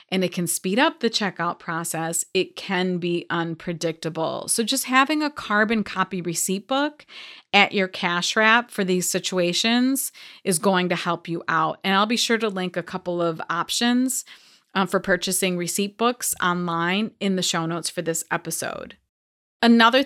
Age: 30-49